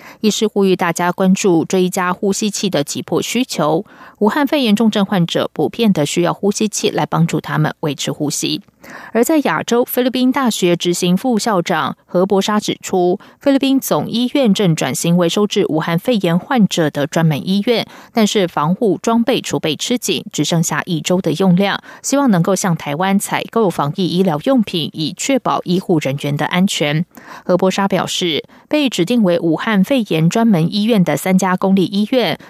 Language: German